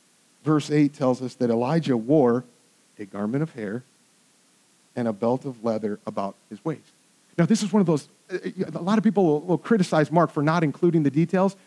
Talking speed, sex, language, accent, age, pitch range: 190 wpm, male, English, American, 40-59, 180-270 Hz